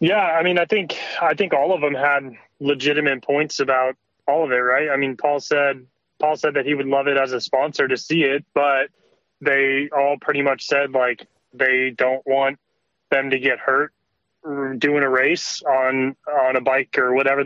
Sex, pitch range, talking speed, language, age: male, 130-145 Hz, 200 wpm, English, 20-39